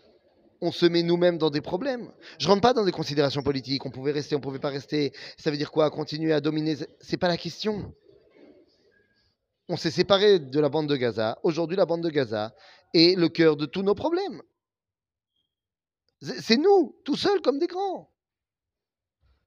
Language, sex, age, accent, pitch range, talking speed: French, male, 30-49, French, 140-180 Hz, 190 wpm